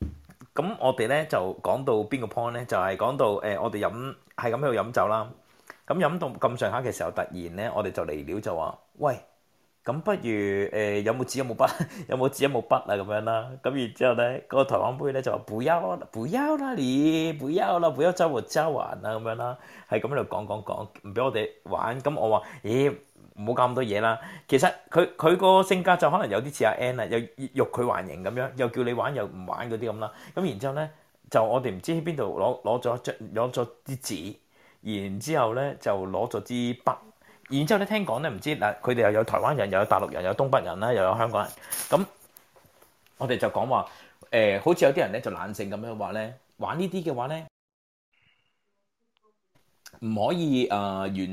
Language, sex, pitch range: Japanese, male, 110-155 Hz